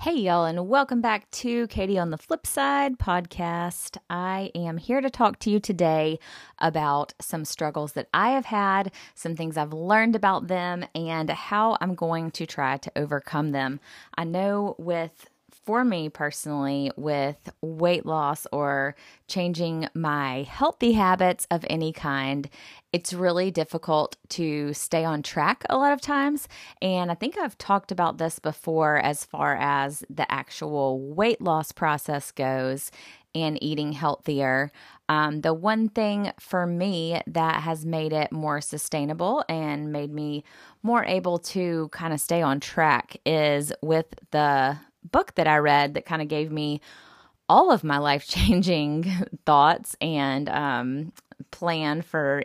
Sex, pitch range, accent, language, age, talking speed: female, 150-185 Hz, American, English, 20-39, 150 wpm